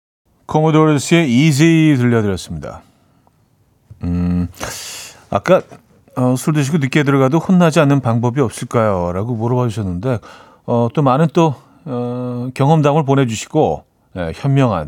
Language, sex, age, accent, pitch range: Korean, male, 40-59, native, 105-155 Hz